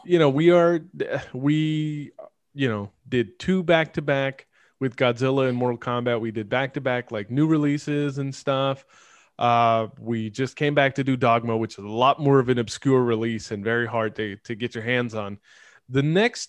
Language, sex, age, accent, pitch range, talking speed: English, male, 20-39, American, 120-155 Hz, 200 wpm